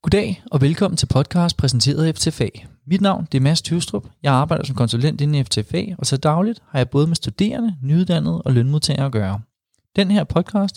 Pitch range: 120-160 Hz